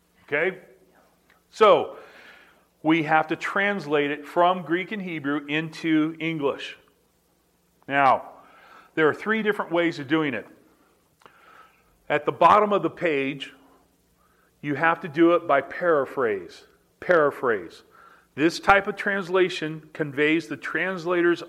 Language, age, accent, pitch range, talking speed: English, 40-59, American, 145-175 Hz, 120 wpm